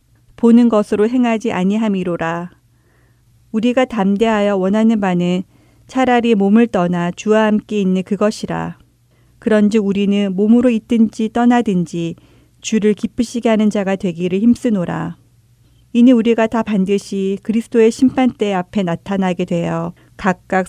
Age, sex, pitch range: 40-59, female, 175-225 Hz